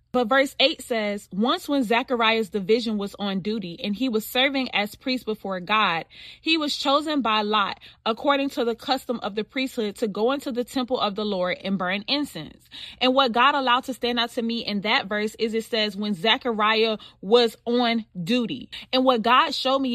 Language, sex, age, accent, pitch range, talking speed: English, female, 20-39, American, 220-265 Hz, 200 wpm